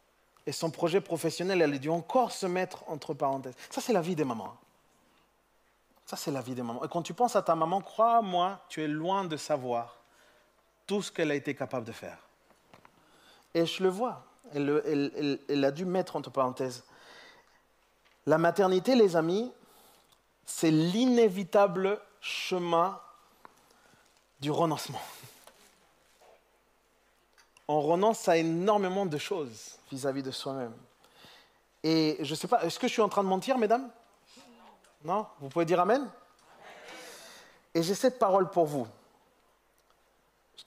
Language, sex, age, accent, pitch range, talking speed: French, male, 30-49, French, 150-195 Hz, 155 wpm